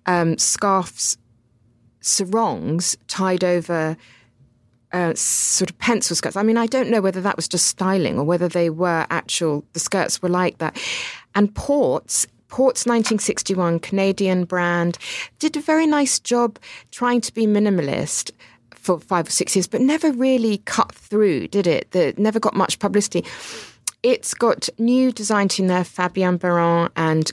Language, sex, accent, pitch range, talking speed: English, female, British, 165-205 Hz, 155 wpm